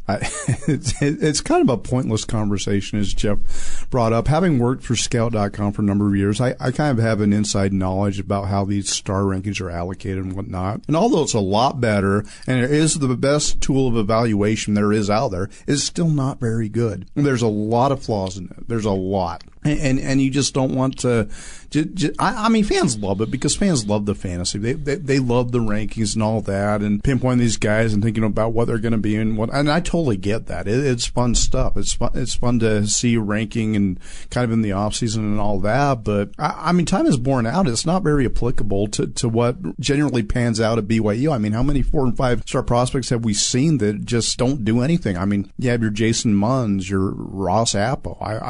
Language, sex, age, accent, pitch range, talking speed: English, male, 40-59, American, 105-130 Hz, 230 wpm